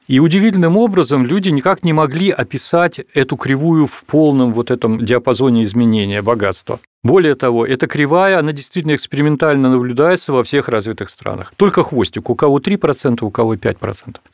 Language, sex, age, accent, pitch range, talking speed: Russian, male, 40-59, native, 120-170 Hz, 155 wpm